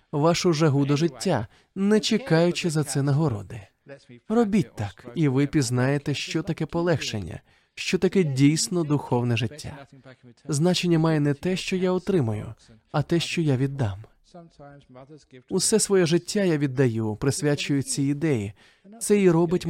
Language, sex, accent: Ukrainian, male, native